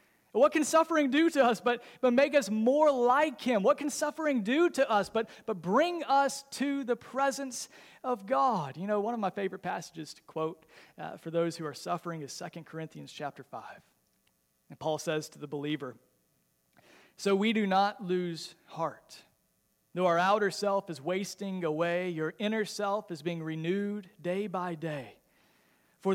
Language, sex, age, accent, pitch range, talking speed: English, male, 40-59, American, 165-215 Hz, 175 wpm